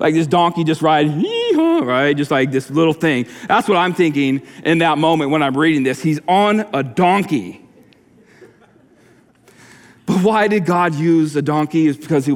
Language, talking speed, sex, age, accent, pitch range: English, 180 wpm, male, 40-59, American, 125-185 Hz